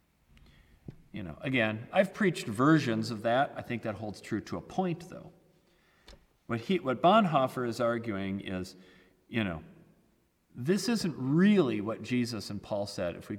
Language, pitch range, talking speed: English, 100-140 Hz, 160 wpm